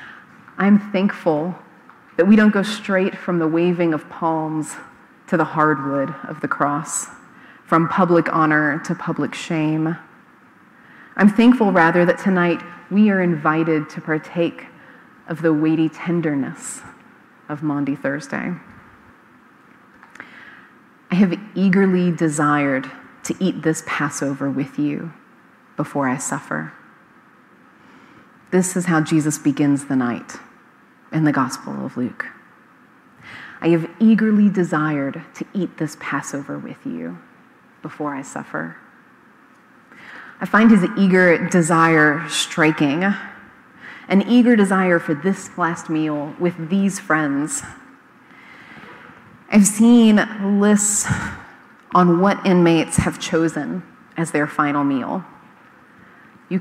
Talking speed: 115 wpm